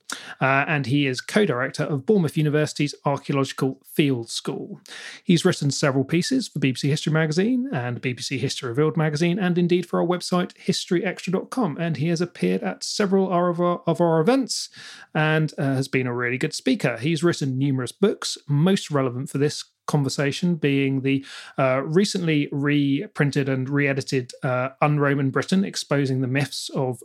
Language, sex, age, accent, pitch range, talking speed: English, male, 30-49, British, 135-175 Hz, 155 wpm